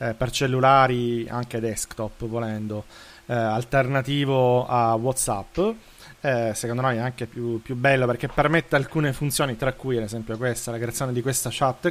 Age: 30-49